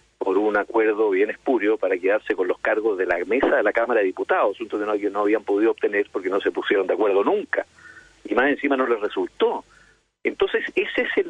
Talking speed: 225 wpm